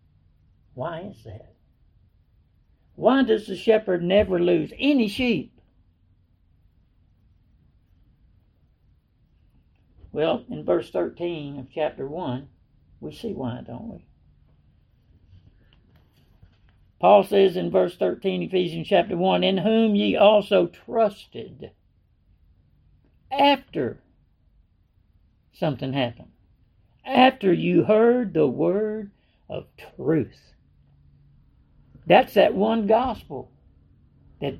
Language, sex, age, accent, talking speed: English, male, 60-79, American, 90 wpm